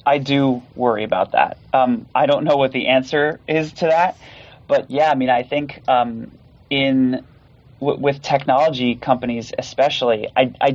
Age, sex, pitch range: 30-49, male, 120-140 Hz